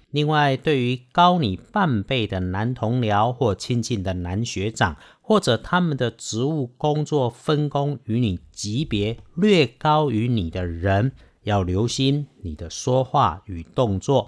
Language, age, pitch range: Chinese, 50-69, 100-140 Hz